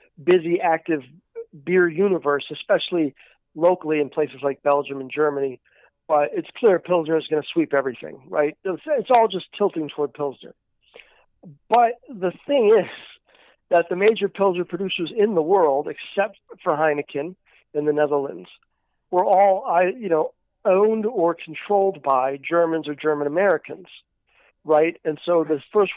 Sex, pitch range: male, 145-185 Hz